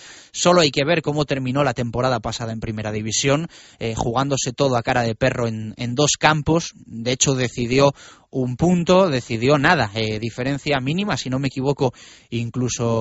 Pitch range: 125-160 Hz